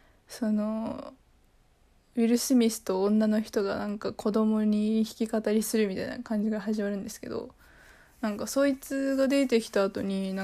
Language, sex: Japanese, female